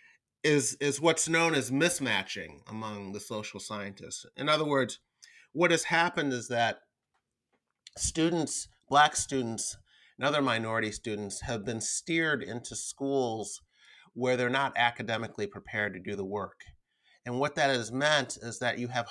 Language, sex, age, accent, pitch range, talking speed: English, male, 30-49, American, 105-135 Hz, 150 wpm